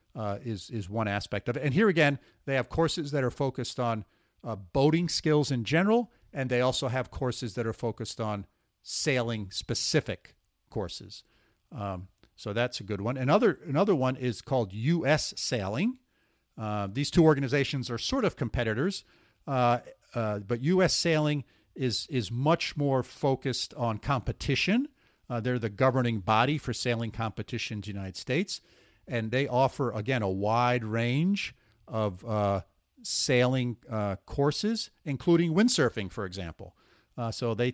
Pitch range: 110-145 Hz